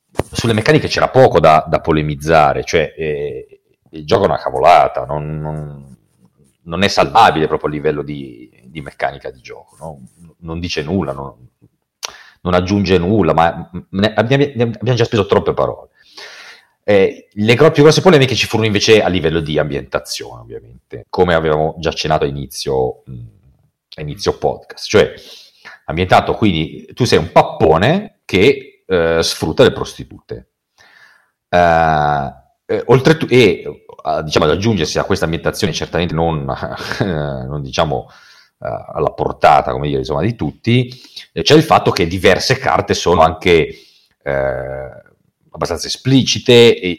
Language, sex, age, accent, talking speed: Italian, male, 40-59, native, 145 wpm